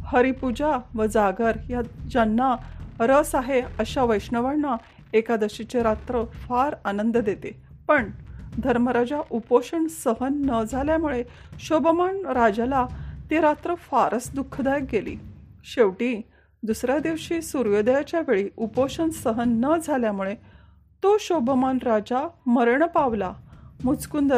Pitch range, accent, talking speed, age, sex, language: 235-300 Hz, native, 105 wpm, 40-59, female, Marathi